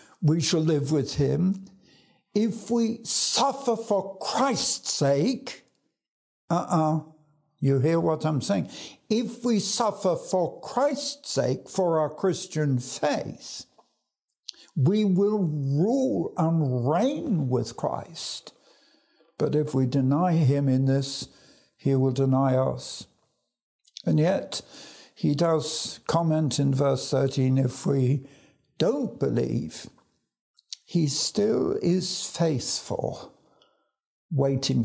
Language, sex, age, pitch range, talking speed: English, male, 60-79, 145-200 Hz, 110 wpm